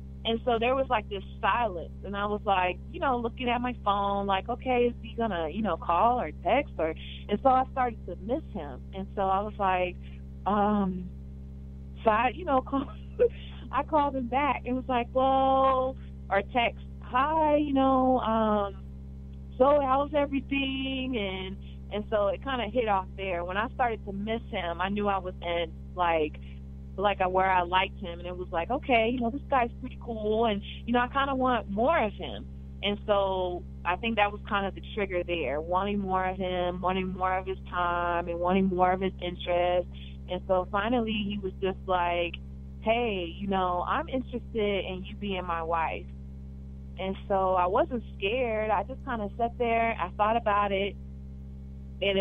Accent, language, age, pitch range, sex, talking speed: American, English, 30-49, 160-235 Hz, female, 195 wpm